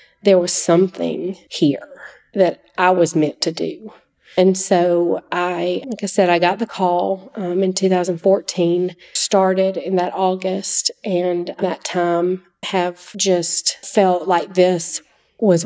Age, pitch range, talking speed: 40-59, 180-220 Hz, 135 wpm